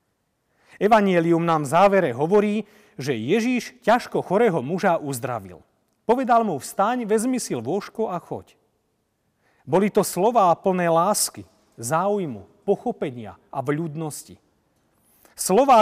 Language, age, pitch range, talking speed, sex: Slovak, 40-59, 140-200 Hz, 110 wpm, male